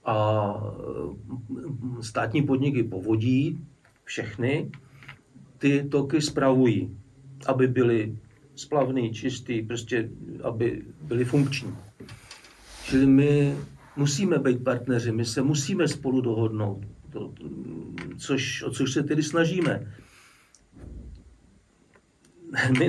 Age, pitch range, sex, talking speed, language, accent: 50-69, 115-140 Hz, male, 90 wpm, English, Czech